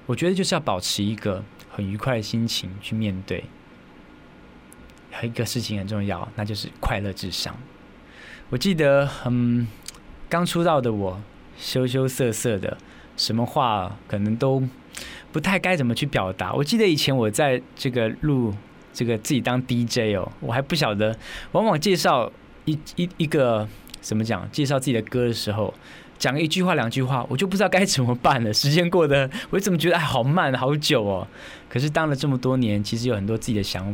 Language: Chinese